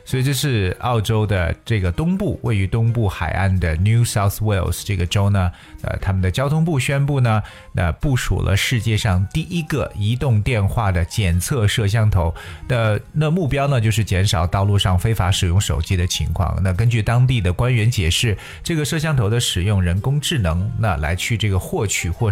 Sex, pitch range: male, 95-115 Hz